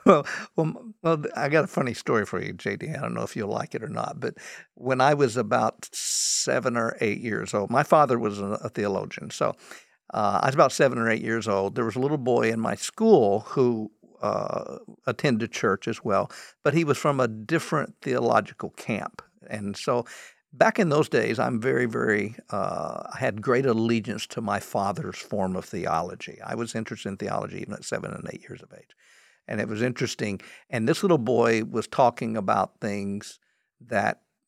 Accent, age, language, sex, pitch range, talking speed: American, 60-79, English, male, 110-150 Hz, 200 wpm